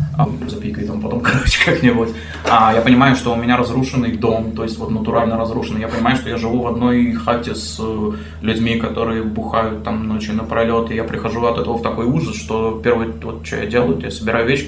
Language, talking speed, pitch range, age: Russian, 200 wpm, 105-120 Hz, 20-39